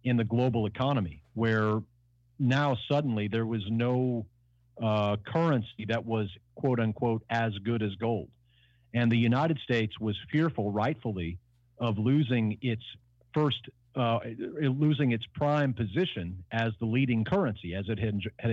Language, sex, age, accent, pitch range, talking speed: English, male, 50-69, American, 110-125 Hz, 145 wpm